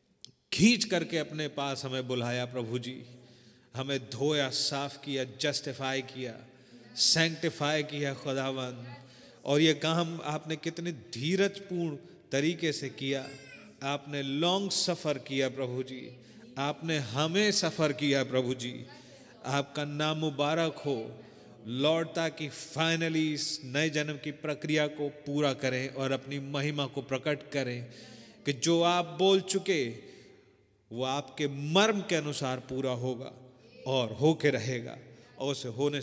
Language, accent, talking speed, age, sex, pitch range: Hindi, native, 130 wpm, 30-49, male, 130-155 Hz